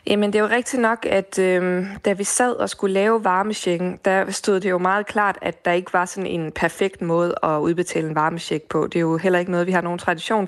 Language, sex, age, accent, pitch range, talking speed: Danish, female, 20-39, native, 170-200 Hz, 250 wpm